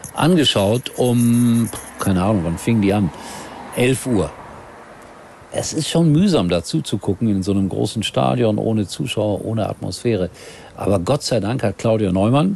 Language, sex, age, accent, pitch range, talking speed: German, male, 50-69, German, 95-120 Hz, 160 wpm